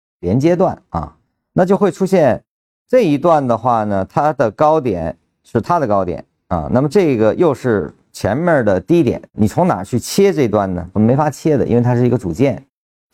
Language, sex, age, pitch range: Chinese, male, 50-69, 90-130 Hz